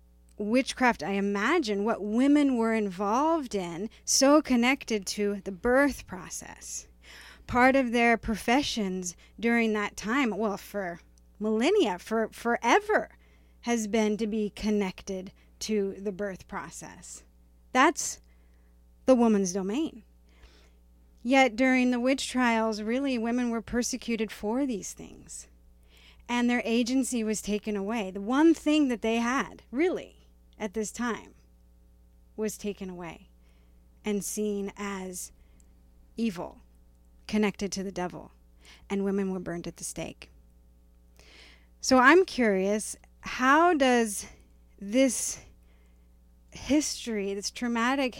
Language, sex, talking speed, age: English, female, 115 wpm, 30-49